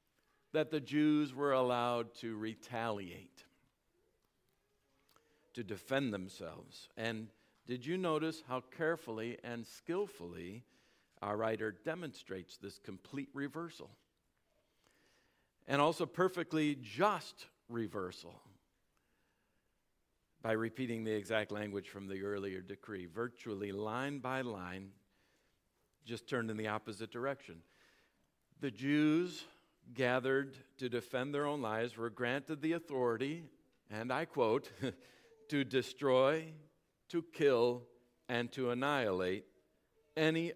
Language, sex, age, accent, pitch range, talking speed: English, male, 50-69, American, 110-145 Hz, 105 wpm